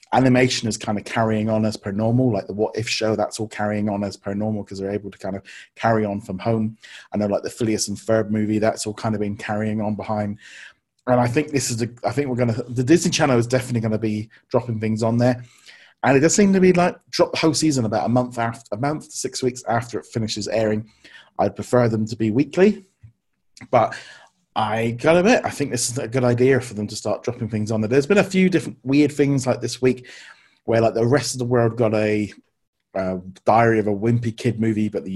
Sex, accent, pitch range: male, British, 105-130 Hz